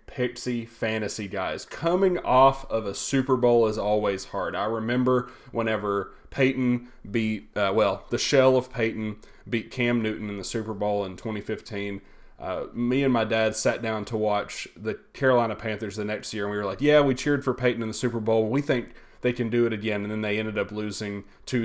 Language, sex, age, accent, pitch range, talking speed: English, male, 30-49, American, 105-125 Hz, 205 wpm